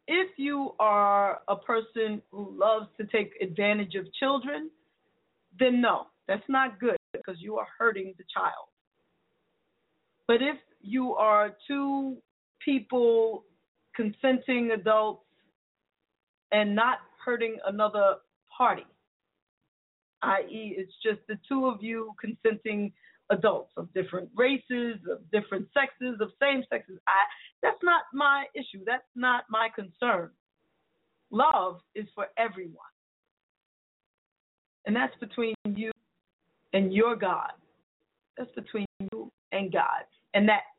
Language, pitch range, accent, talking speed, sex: English, 195-250 Hz, American, 120 wpm, female